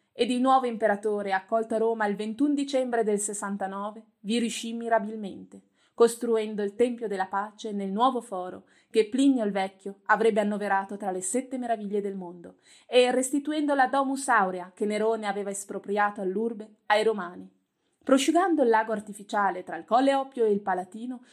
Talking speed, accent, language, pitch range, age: 165 wpm, native, Italian, 195-230 Hz, 30-49